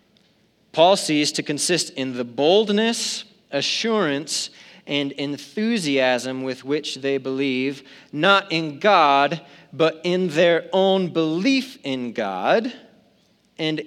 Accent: American